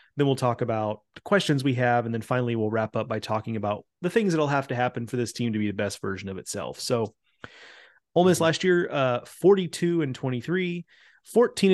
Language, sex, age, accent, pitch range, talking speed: English, male, 30-49, American, 115-145 Hz, 220 wpm